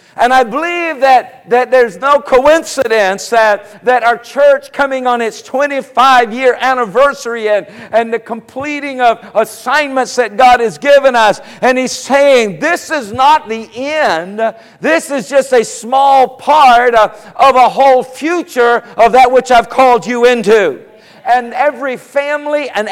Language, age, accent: English, 50-69, American